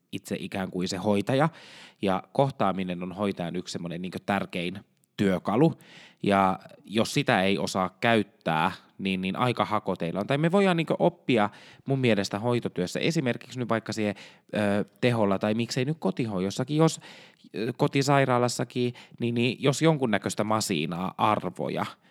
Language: Finnish